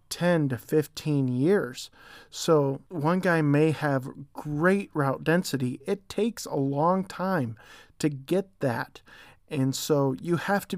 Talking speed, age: 140 wpm, 40-59